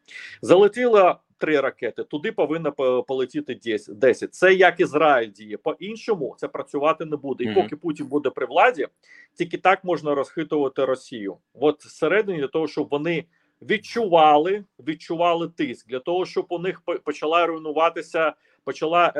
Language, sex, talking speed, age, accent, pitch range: Ukrainian, male, 135 wpm, 40-59, native, 150-215 Hz